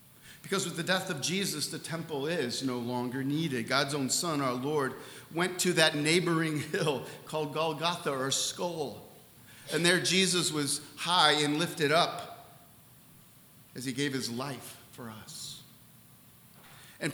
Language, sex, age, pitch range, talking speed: English, male, 50-69, 130-170 Hz, 145 wpm